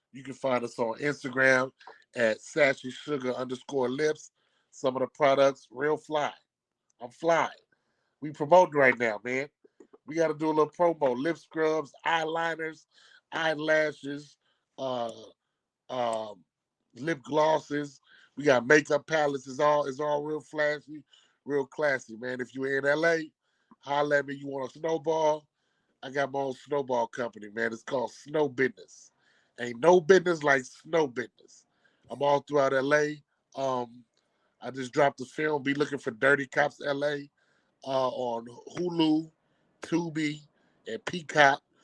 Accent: American